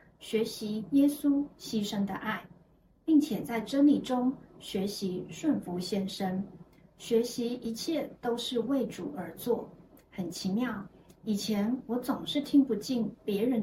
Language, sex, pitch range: Chinese, female, 200-275 Hz